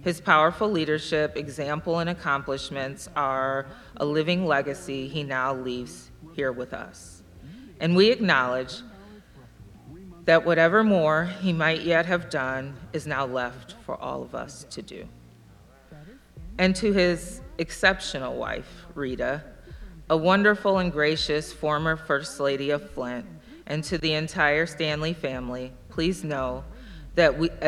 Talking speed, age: 130 wpm, 30-49